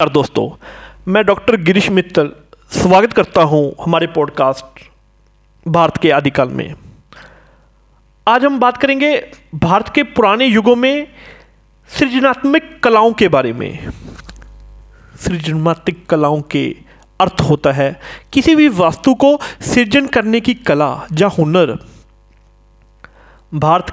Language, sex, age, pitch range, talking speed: Hindi, male, 40-59, 155-240 Hz, 115 wpm